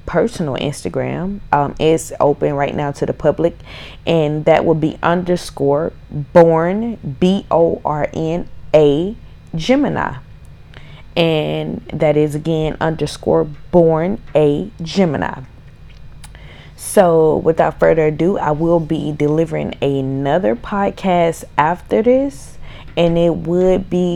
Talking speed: 105 wpm